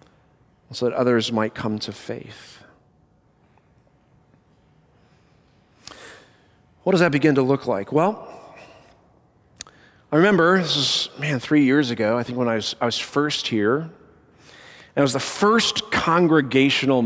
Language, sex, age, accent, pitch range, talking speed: English, male, 40-59, American, 120-165 Hz, 135 wpm